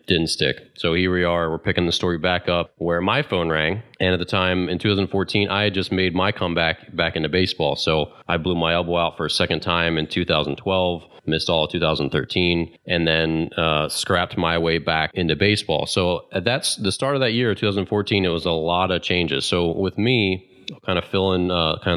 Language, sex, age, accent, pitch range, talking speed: English, male, 30-49, American, 80-95 Hz, 220 wpm